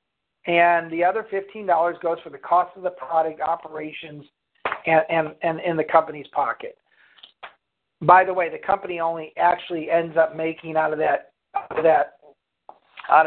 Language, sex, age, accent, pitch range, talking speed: English, male, 50-69, American, 155-190 Hz, 150 wpm